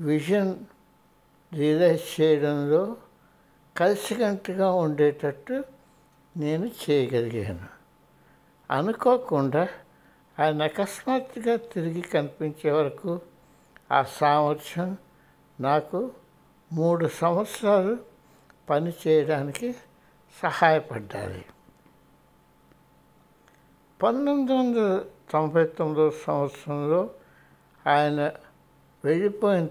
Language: Hindi